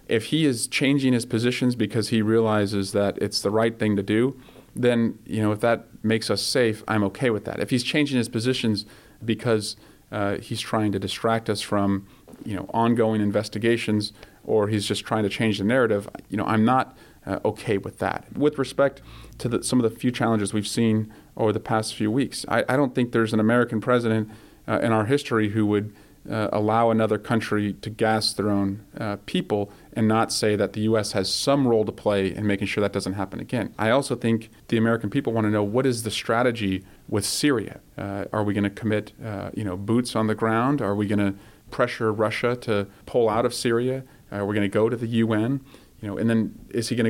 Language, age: English, 40-59